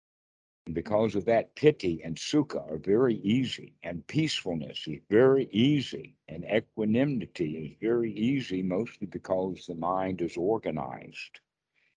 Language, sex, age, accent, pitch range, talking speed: English, male, 60-79, American, 95-130 Hz, 130 wpm